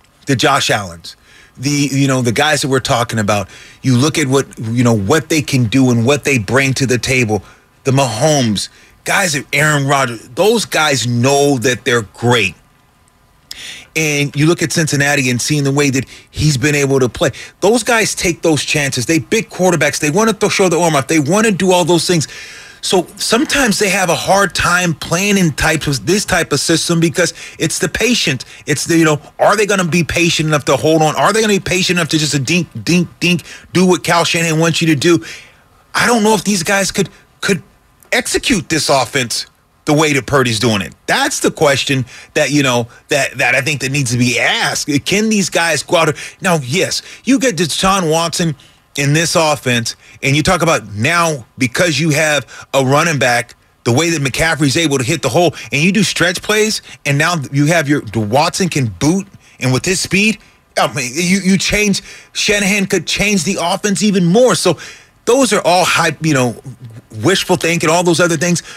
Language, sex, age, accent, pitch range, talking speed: English, male, 30-49, American, 135-180 Hz, 210 wpm